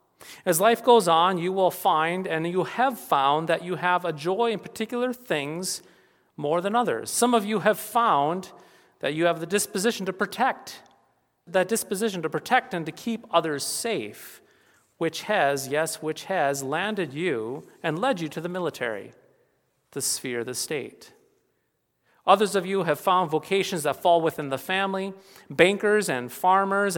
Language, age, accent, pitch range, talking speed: English, 40-59, American, 155-210 Hz, 165 wpm